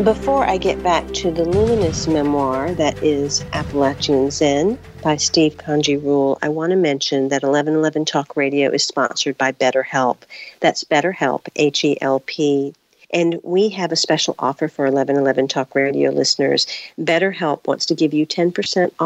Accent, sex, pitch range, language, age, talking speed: American, female, 140-170 Hz, English, 50-69, 150 wpm